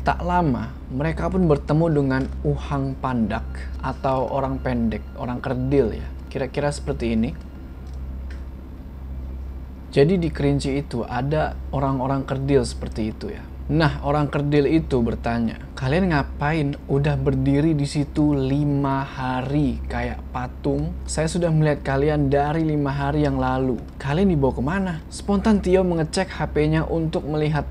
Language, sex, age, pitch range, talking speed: Indonesian, male, 20-39, 125-150 Hz, 130 wpm